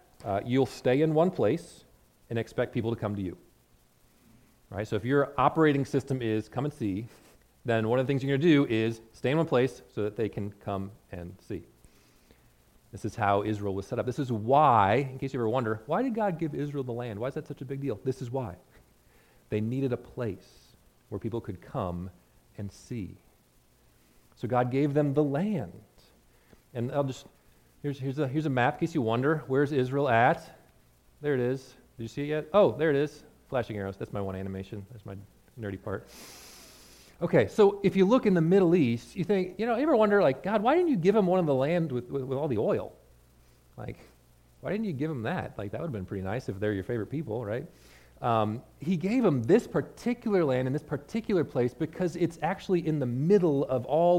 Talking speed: 225 wpm